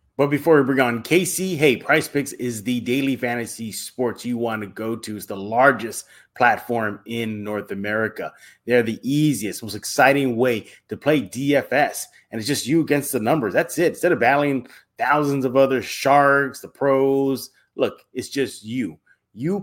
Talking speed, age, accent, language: 175 wpm, 30-49, American, English